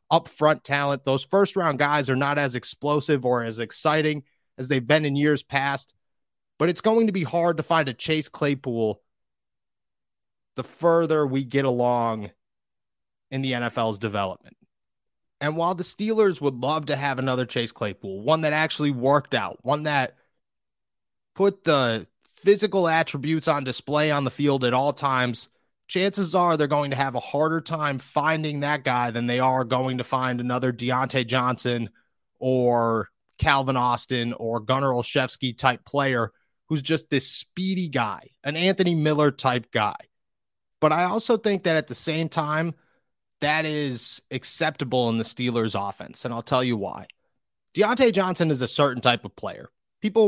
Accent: American